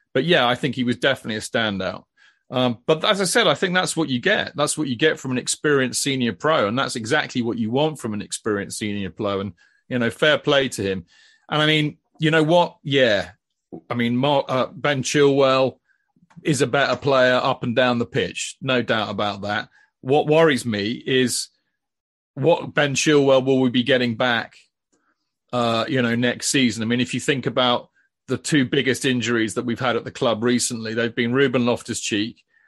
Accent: British